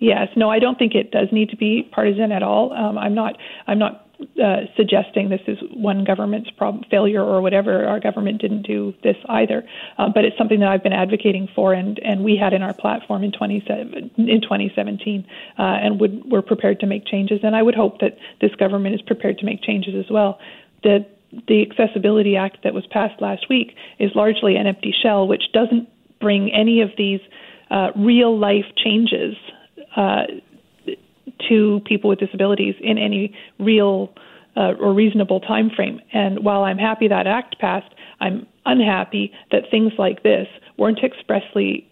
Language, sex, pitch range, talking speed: English, female, 195-220 Hz, 185 wpm